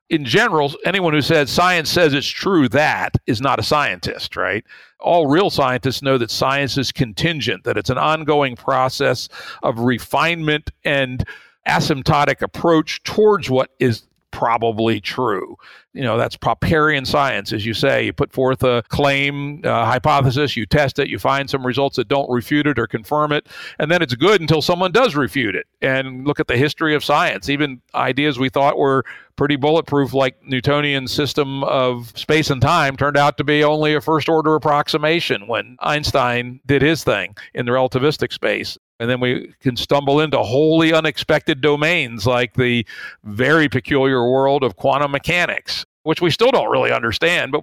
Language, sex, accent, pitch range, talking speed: English, male, American, 125-150 Hz, 175 wpm